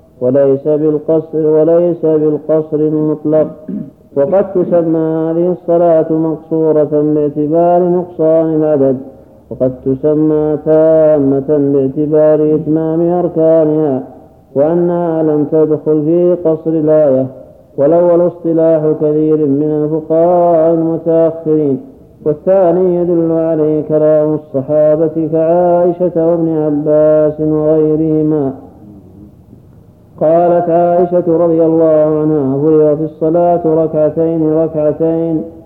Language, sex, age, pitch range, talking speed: Arabic, male, 50-69, 150-165 Hz, 80 wpm